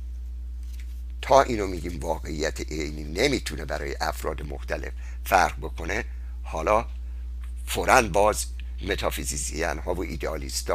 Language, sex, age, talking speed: Persian, male, 60-79, 100 wpm